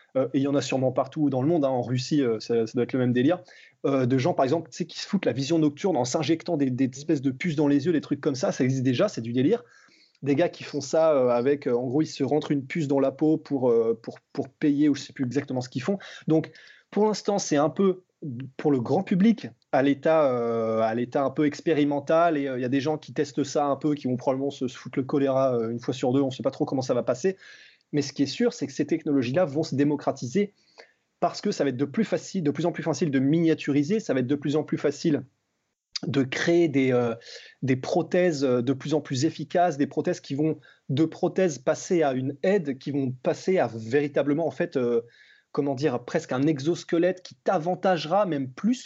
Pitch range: 135-165 Hz